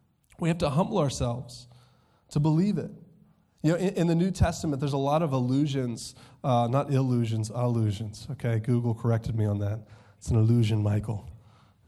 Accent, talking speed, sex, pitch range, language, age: American, 170 wpm, male, 120-155 Hz, English, 30-49